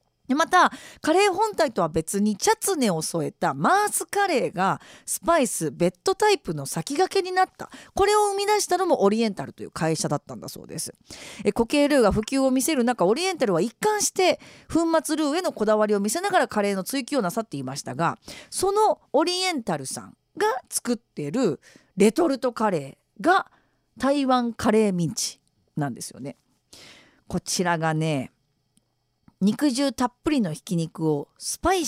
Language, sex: Japanese, female